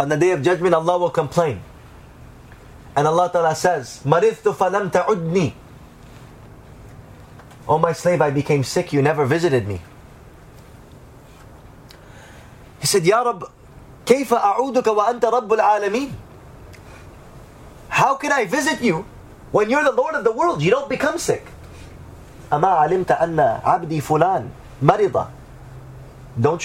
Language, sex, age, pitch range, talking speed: English, male, 30-49, 130-175 Hz, 105 wpm